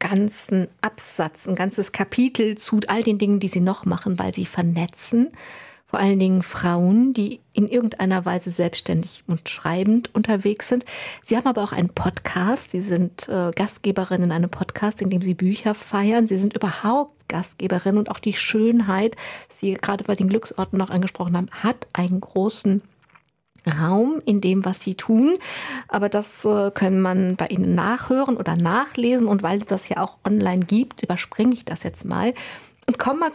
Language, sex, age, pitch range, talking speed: German, female, 50-69, 185-225 Hz, 175 wpm